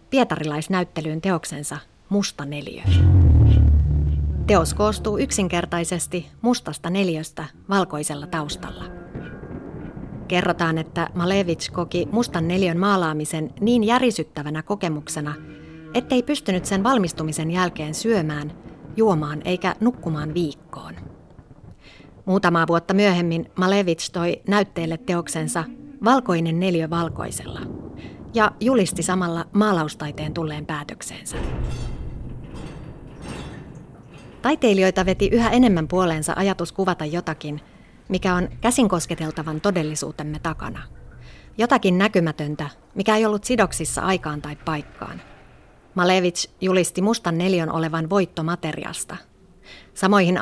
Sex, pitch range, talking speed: female, 155-195 Hz, 90 wpm